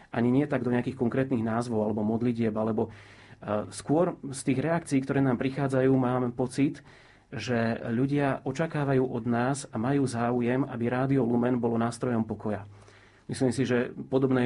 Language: Slovak